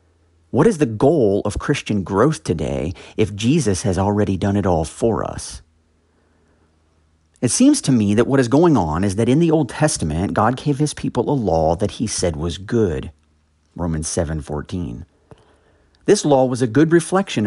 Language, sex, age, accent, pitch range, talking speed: English, male, 50-69, American, 85-125 Hz, 180 wpm